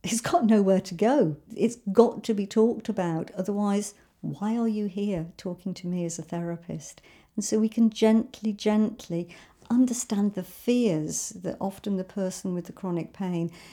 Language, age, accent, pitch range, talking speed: English, 60-79, British, 175-220 Hz, 175 wpm